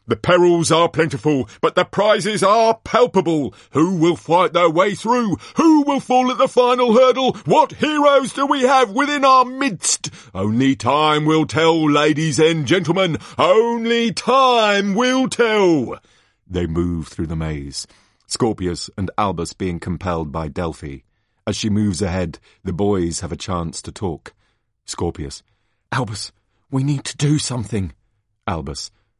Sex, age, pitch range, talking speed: male, 40-59, 100-160 Hz, 150 wpm